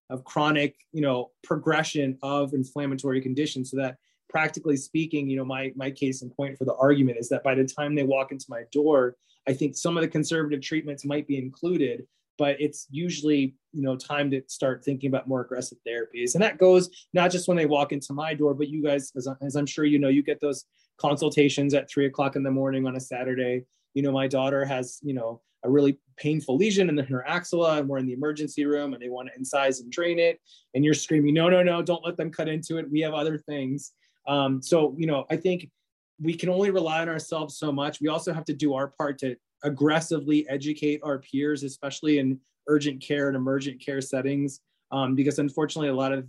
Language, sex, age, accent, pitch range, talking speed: English, male, 20-39, American, 135-155 Hz, 225 wpm